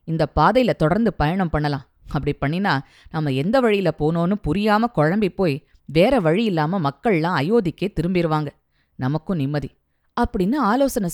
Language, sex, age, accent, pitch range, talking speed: Tamil, female, 20-39, native, 175-245 Hz, 130 wpm